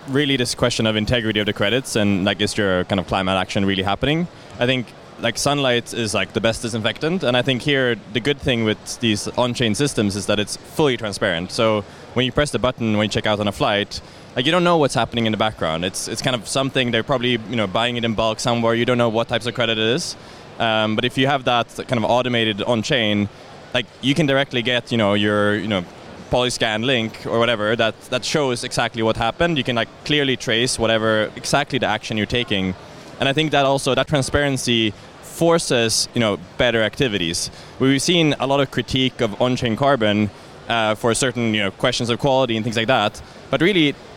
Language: English